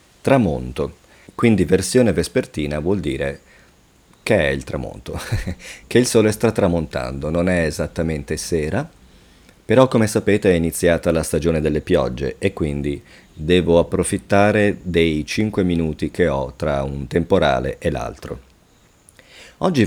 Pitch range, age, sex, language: 75-100 Hz, 40-59, male, English